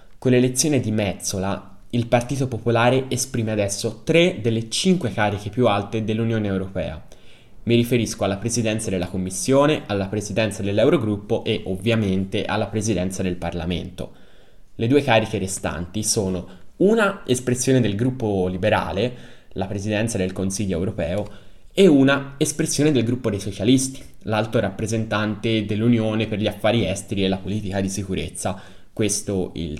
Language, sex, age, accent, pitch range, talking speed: Italian, male, 10-29, native, 95-125 Hz, 140 wpm